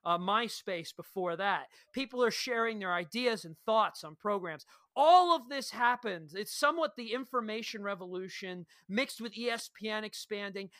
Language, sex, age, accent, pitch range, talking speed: English, male, 40-59, American, 200-260 Hz, 145 wpm